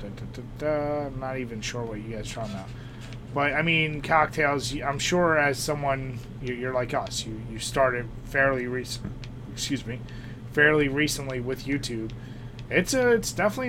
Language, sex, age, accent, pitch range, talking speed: English, male, 30-49, American, 120-135 Hz, 160 wpm